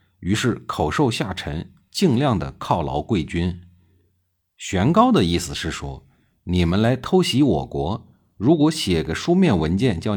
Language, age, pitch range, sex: Chinese, 50-69, 85-120 Hz, male